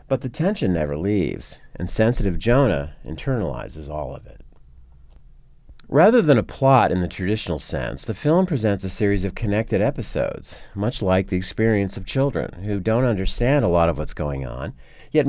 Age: 50-69